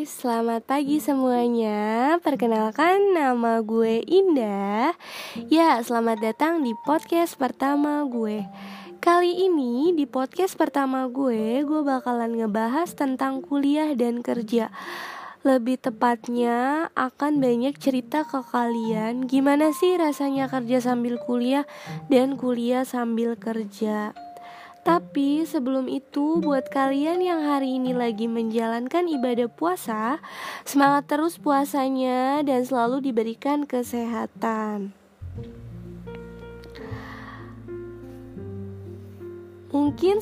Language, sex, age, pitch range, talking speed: Indonesian, female, 20-39, 225-290 Hz, 95 wpm